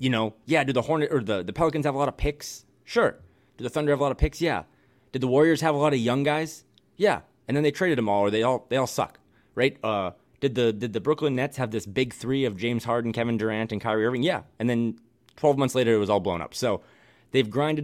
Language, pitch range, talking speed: English, 105-135 Hz, 275 wpm